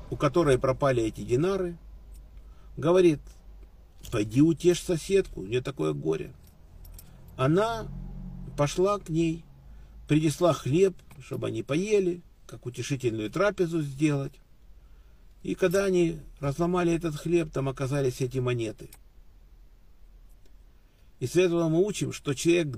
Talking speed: 110 wpm